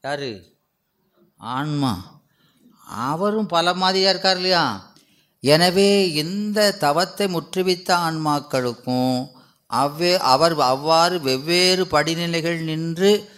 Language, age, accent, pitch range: Tamil, 30-49, native, 125-170 Hz